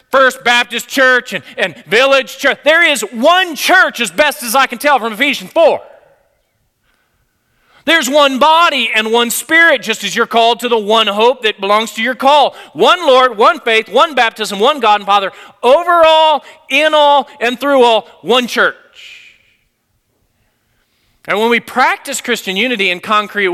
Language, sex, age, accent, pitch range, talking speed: English, male, 40-59, American, 200-280 Hz, 170 wpm